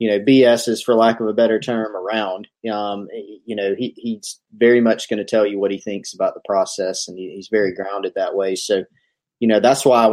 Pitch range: 105-120 Hz